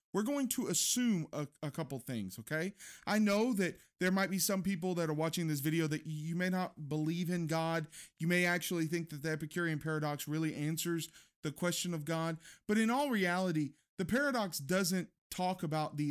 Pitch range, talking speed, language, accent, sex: 155-200 Hz, 200 wpm, English, American, male